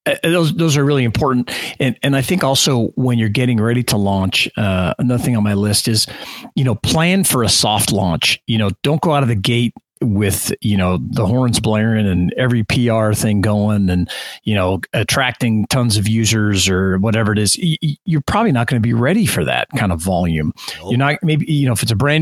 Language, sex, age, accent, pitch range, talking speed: English, male, 40-59, American, 105-145 Hz, 220 wpm